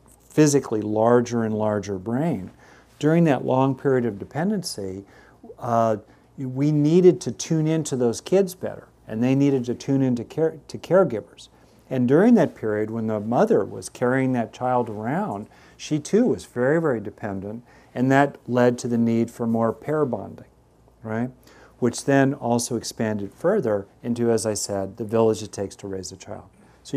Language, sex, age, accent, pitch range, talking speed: English, male, 50-69, American, 105-135 Hz, 170 wpm